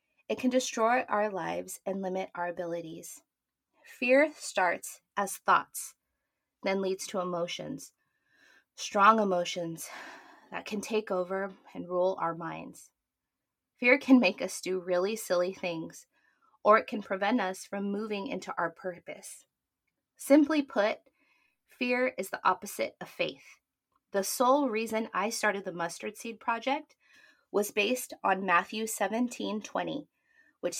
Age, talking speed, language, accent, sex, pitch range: 20-39, 135 wpm, English, American, female, 185-250 Hz